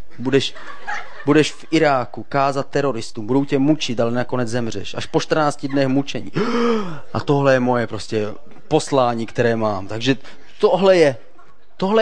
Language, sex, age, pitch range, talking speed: Czech, male, 30-49, 110-140 Hz, 135 wpm